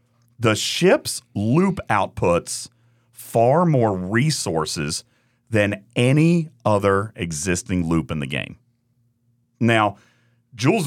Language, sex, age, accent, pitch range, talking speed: English, male, 40-59, American, 105-130 Hz, 95 wpm